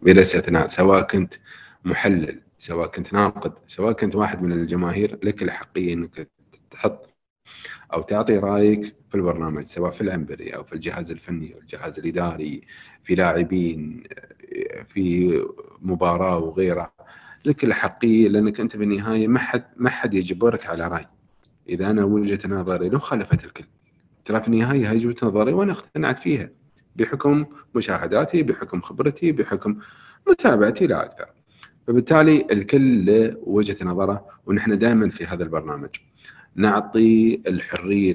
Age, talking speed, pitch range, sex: 40-59, 130 wpm, 90-115 Hz, male